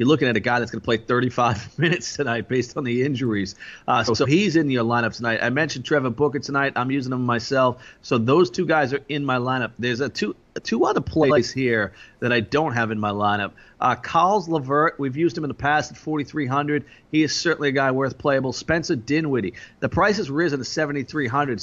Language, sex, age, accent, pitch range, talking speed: English, male, 30-49, American, 125-160 Hz, 220 wpm